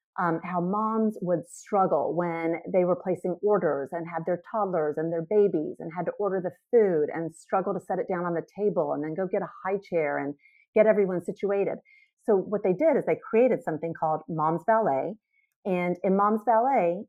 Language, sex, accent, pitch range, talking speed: English, female, American, 165-235 Hz, 205 wpm